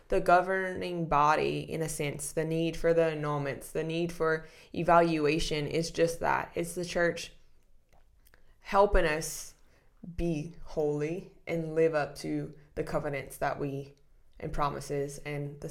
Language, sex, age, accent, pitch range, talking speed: English, female, 20-39, American, 155-185 Hz, 140 wpm